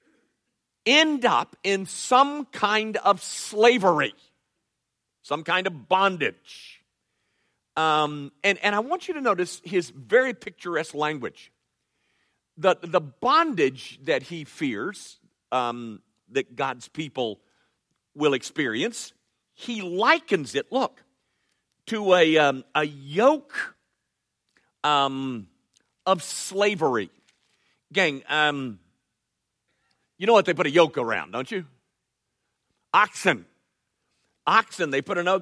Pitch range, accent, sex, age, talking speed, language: 135-215 Hz, American, male, 50-69, 105 wpm, English